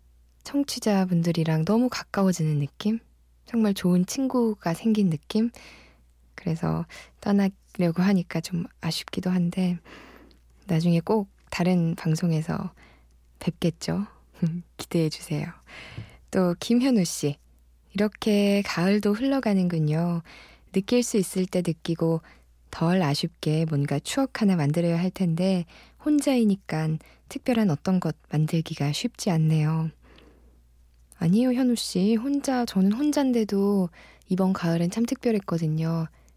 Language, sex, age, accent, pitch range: Korean, female, 20-39, native, 150-200 Hz